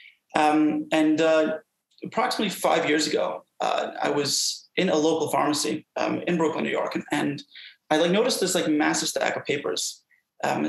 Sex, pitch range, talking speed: male, 150-195 Hz, 175 wpm